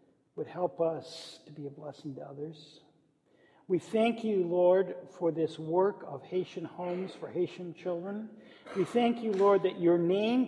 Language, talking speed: English, 165 wpm